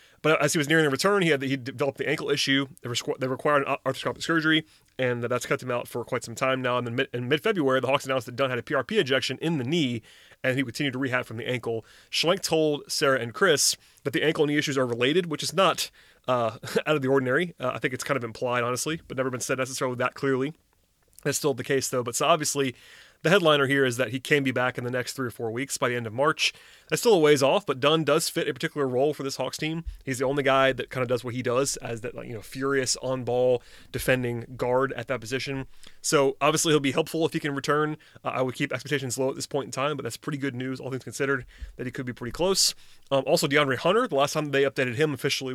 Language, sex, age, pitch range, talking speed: English, male, 30-49, 125-150 Hz, 265 wpm